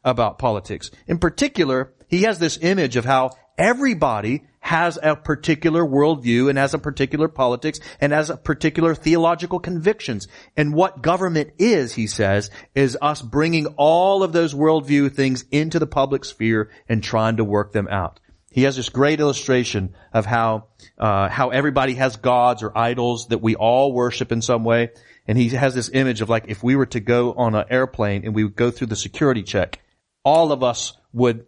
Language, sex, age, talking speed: English, male, 40-59, 185 wpm